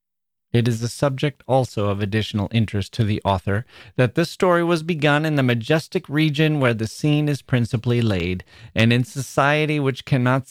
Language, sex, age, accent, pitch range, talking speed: English, male, 30-49, American, 105-130 Hz, 175 wpm